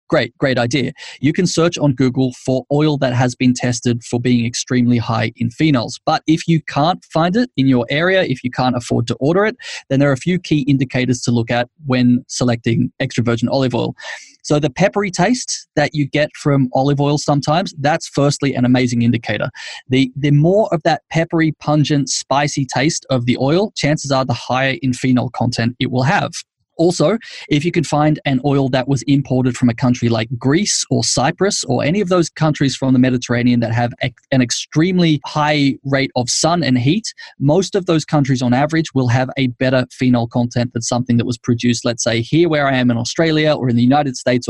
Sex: male